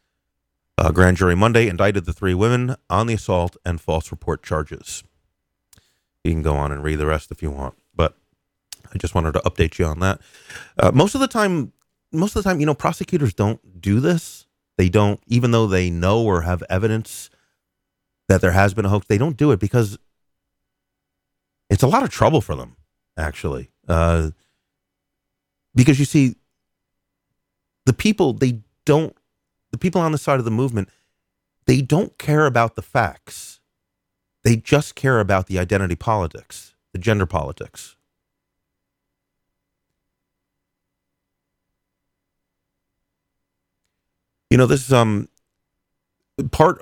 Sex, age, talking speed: male, 30-49, 150 wpm